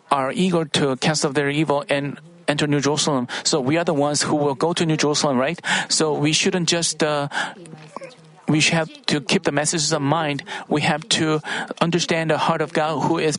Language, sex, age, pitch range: Korean, male, 40-59, 155-185 Hz